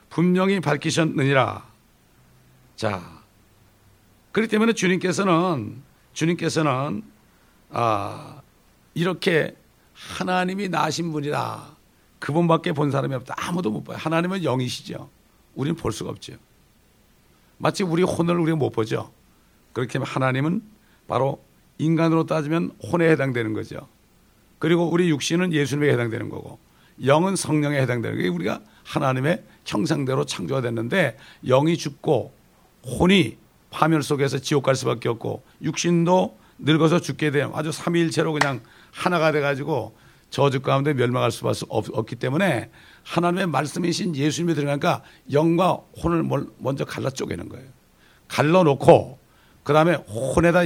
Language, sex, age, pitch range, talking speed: English, male, 60-79, 130-170 Hz, 110 wpm